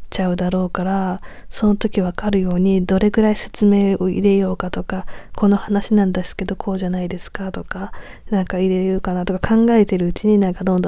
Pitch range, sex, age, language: 185-210 Hz, female, 20-39, Japanese